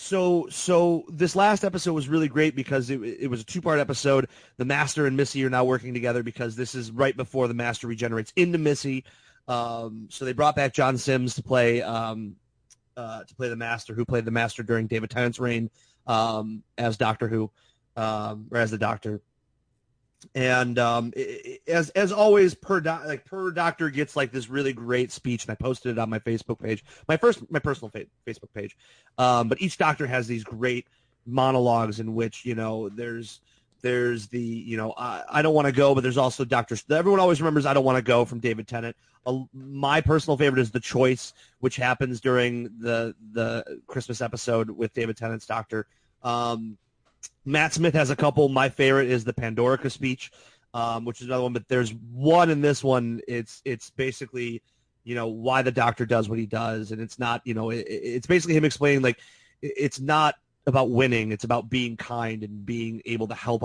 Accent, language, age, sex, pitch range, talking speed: American, English, 30-49, male, 115-135 Hz, 200 wpm